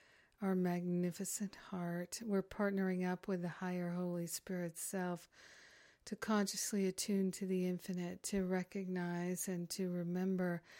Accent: American